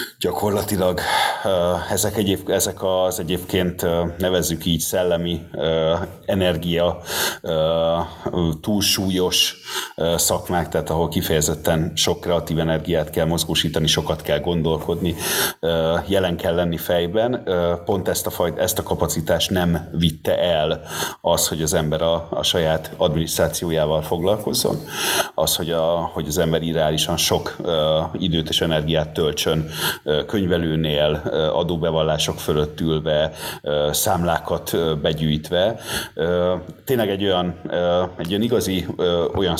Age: 30-49